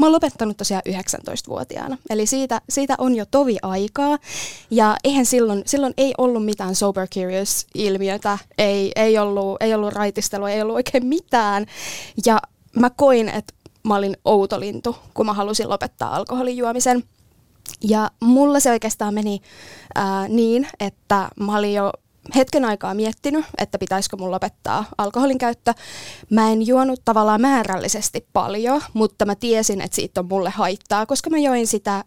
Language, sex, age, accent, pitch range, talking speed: Finnish, female, 20-39, native, 195-240 Hz, 150 wpm